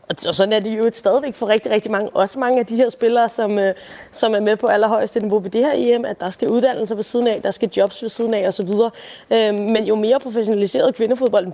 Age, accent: 20-39, native